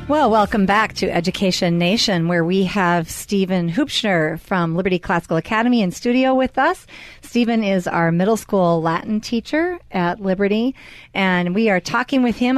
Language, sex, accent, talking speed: English, female, American, 160 wpm